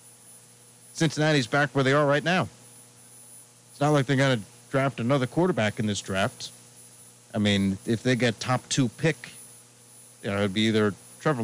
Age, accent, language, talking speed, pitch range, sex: 40-59, American, English, 170 wpm, 105-150 Hz, male